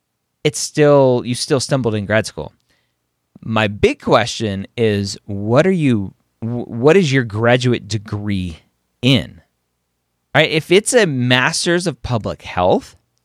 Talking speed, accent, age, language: 135 wpm, American, 30-49, English